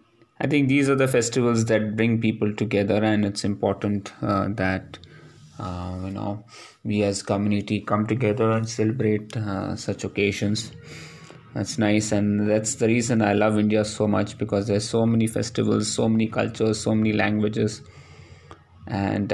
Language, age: English, 20-39